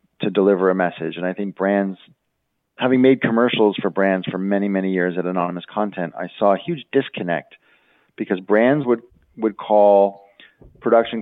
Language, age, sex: English, 40-59, male